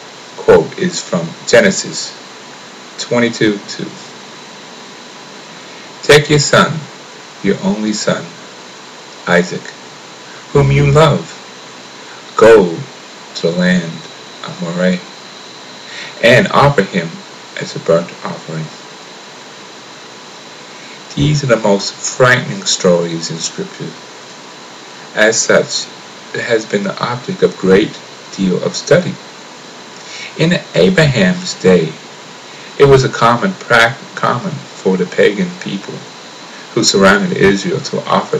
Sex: male